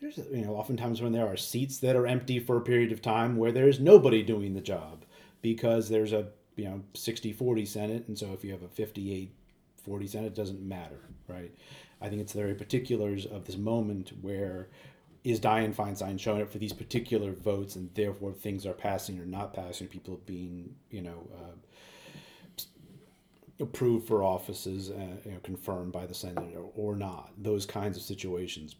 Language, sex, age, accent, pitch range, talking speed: English, male, 40-59, American, 95-115 Hz, 185 wpm